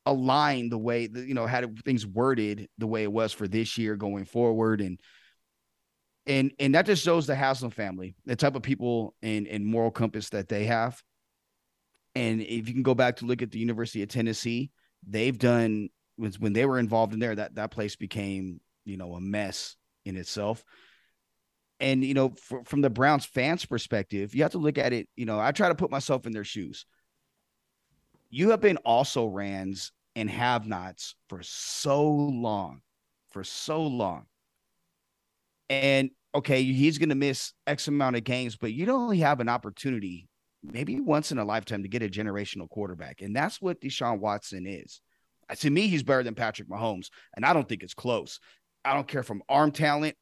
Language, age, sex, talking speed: English, 30-49, male, 190 wpm